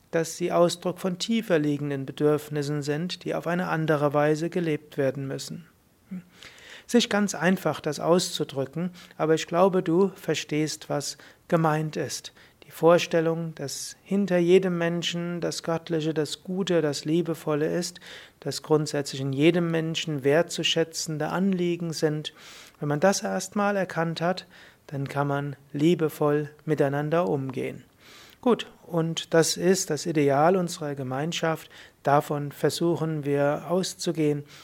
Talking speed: 130 wpm